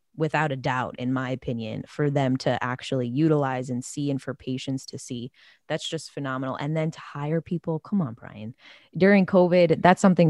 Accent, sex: American, female